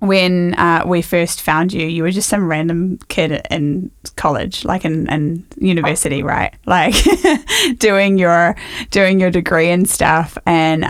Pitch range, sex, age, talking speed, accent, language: 165-200 Hz, female, 20-39, 150 wpm, Australian, English